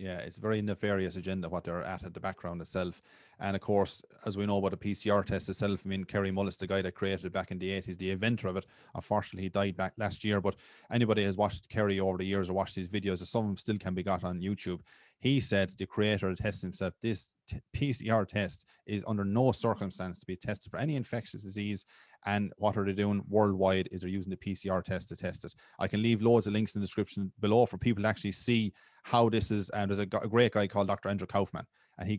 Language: English